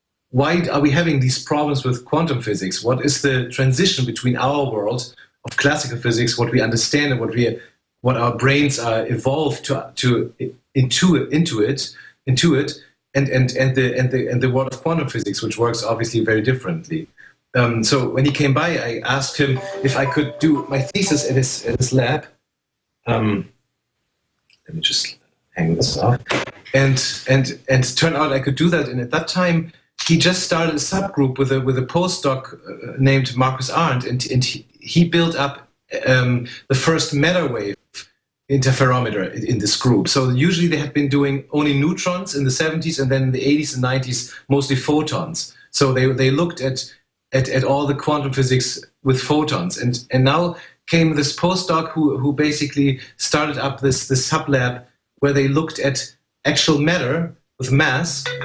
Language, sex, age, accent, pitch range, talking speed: English, male, 40-59, German, 130-150 Hz, 185 wpm